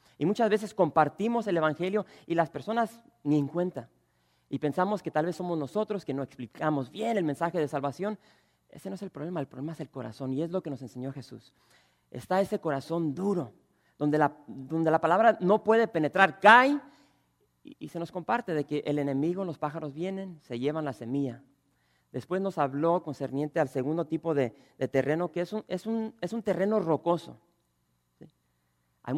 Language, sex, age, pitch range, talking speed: English, male, 40-59, 135-175 Hz, 185 wpm